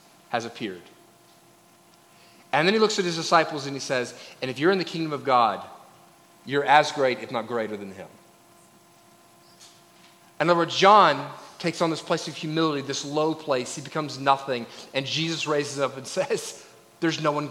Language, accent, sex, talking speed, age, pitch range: English, American, male, 185 wpm, 30-49, 150-200 Hz